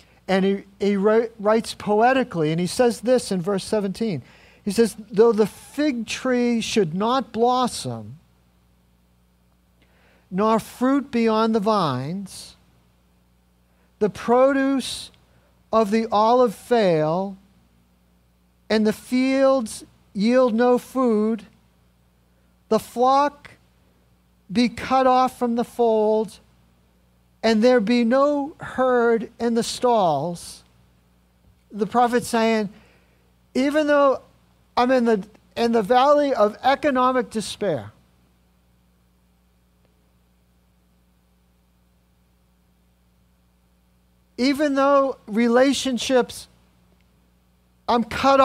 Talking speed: 90 wpm